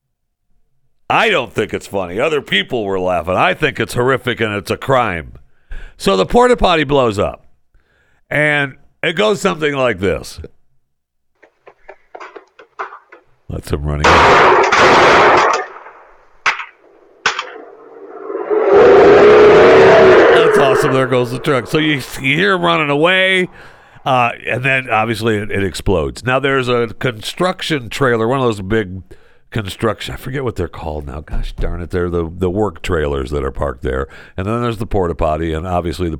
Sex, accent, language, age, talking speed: male, American, English, 60-79, 150 wpm